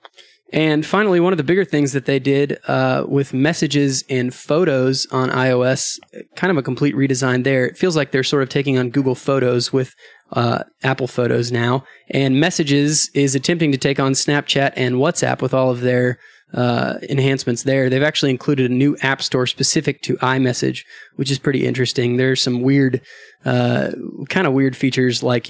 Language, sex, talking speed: English, male, 185 wpm